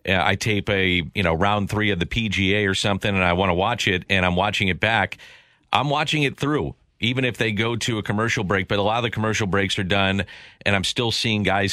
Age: 40-59